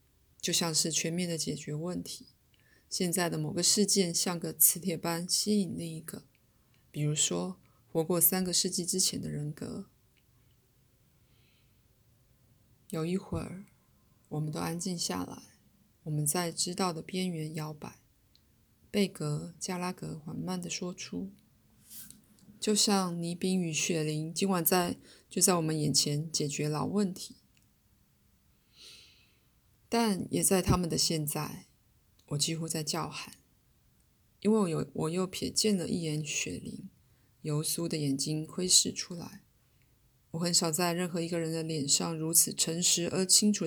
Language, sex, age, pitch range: Chinese, female, 20-39, 150-185 Hz